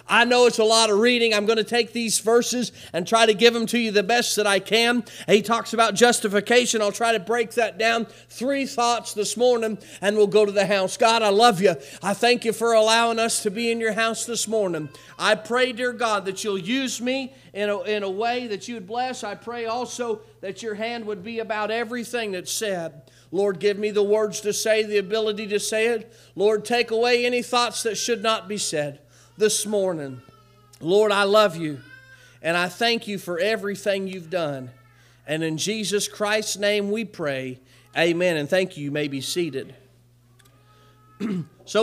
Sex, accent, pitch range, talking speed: male, American, 170-230 Hz, 205 wpm